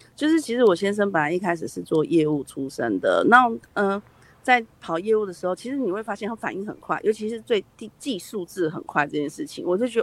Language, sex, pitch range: Chinese, female, 165-225 Hz